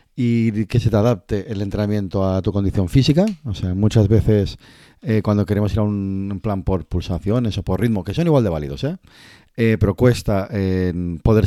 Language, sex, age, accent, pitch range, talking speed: Spanish, male, 30-49, Spanish, 95-110 Hz, 200 wpm